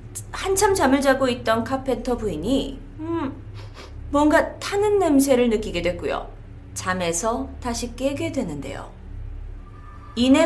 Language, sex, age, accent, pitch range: Korean, female, 30-49, native, 210-320 Hz